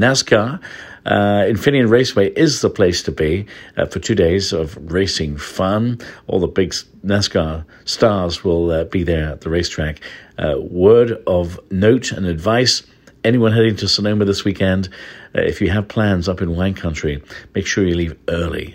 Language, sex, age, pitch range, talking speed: English, male, 60-79, 85-110 Hz, 175 wpm